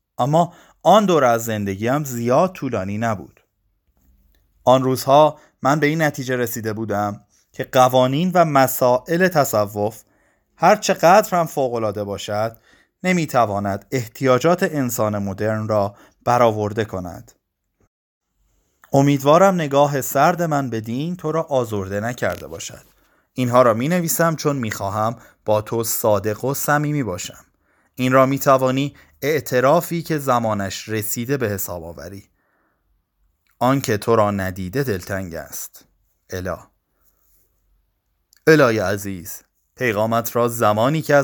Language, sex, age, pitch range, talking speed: Persian, male, 30-49, 105-140 Hz, 120 wpm